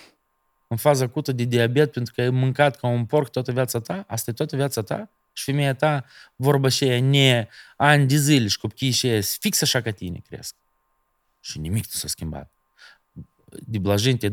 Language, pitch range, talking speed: Romanian, 110-140 Hz, 175 wpm